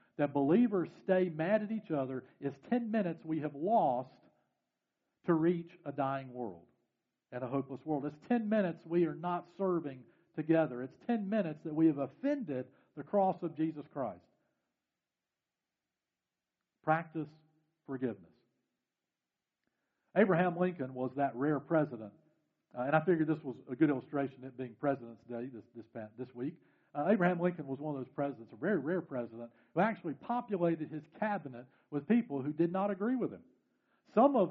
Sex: male